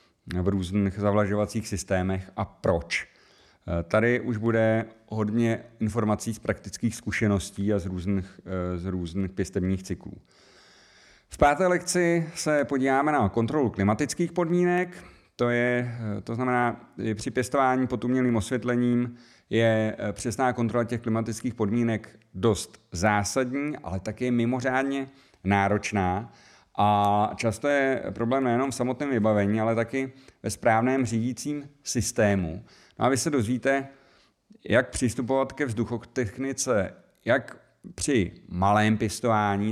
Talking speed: 115 wpm